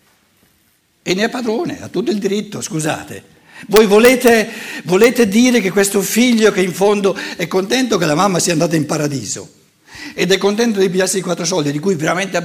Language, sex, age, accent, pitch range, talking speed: Italian, male, 60-79, native, 145-205 Hz, 195 wpm